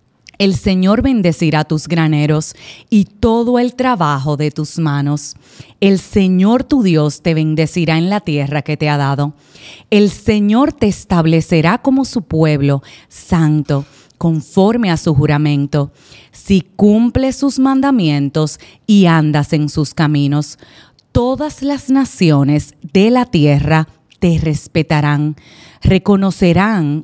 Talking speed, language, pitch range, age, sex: 120 wpm, Spanish, 150-200 Hz, 30-49, female